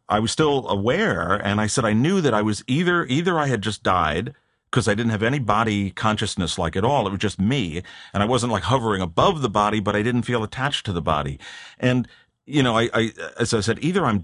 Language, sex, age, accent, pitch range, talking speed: English, male, 40-59, American, 100-130 Hz, 245 wpm